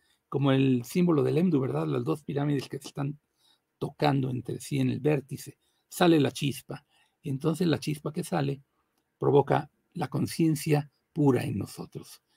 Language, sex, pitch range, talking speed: Spanish, male, 135-160 Hz, 160 wpm